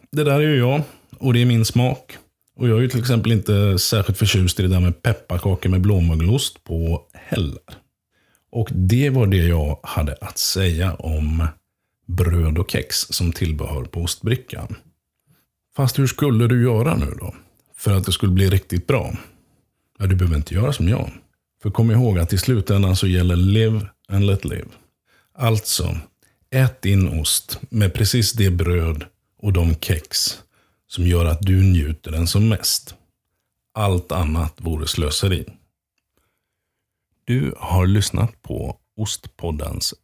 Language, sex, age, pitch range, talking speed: Swedish, male, 50-69, 85-110 Hz, 155 wpm